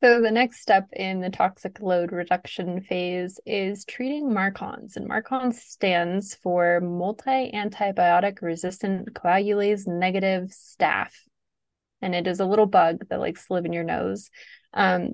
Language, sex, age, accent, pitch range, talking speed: English, female, 20-39, American, 175-210 Hz, 145 wpm